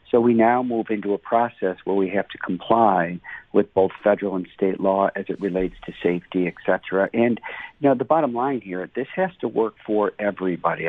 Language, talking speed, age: English, 210 wpm, 50-69